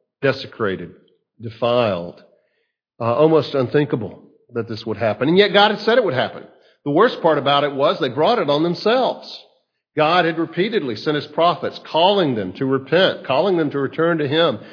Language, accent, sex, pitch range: English, American, male, 115-150 Hz